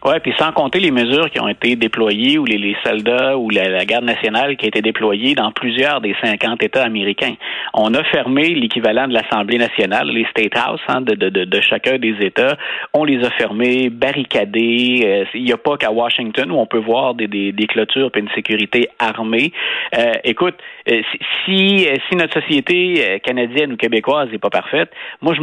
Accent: Canadian